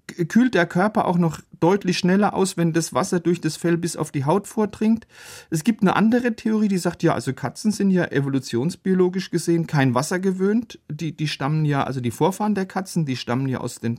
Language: German